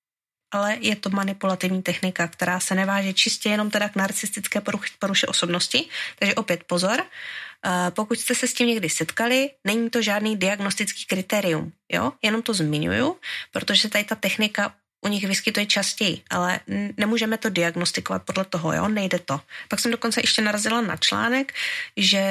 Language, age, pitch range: Czech, 20-39, 185-220 Hz